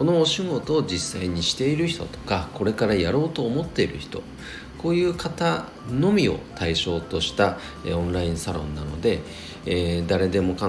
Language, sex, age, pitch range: Japanese, male, 40-59, 80-125 Hz